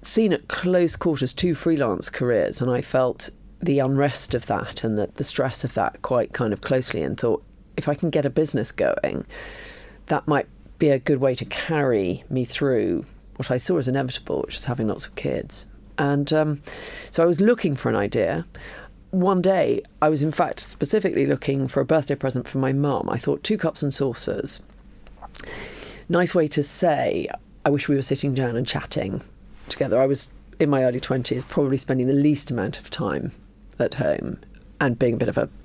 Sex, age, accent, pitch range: female, 40-59, British, 130-160 Hz